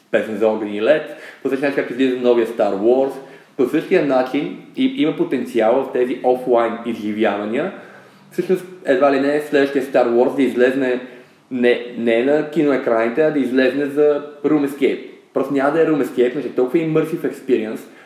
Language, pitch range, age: Bulgarian, 115-140 Hz, 20-39